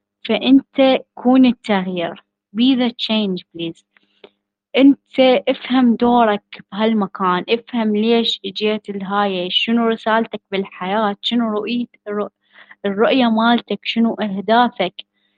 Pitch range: 205-235 Hz